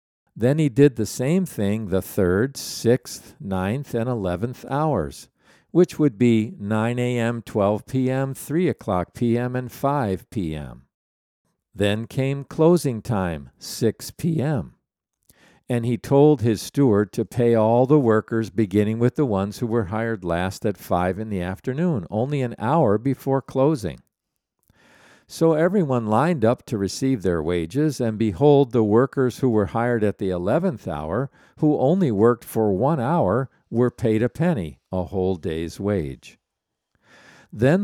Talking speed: 150 wpm